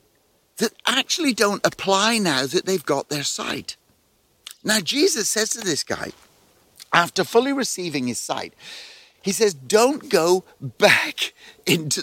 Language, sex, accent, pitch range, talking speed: English, male, British, 130-205 Hz, 135 wpm